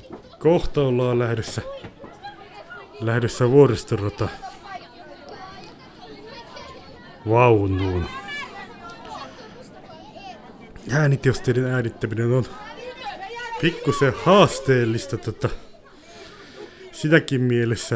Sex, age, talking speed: male, 30-49, 45 wpm